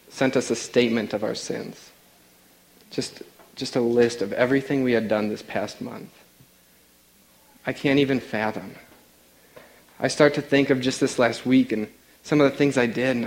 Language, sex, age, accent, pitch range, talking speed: English, male, 40-59, American, 110-145 Hz, 180 wpm